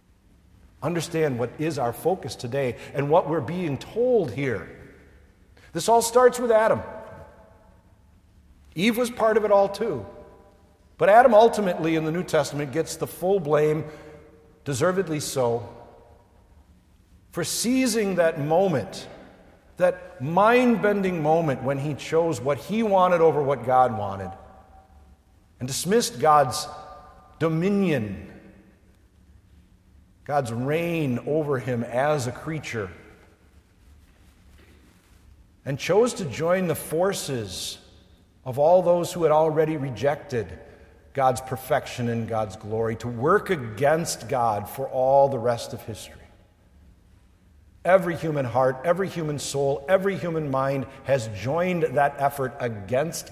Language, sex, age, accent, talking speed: English, male, 50-69, American, 120 wpm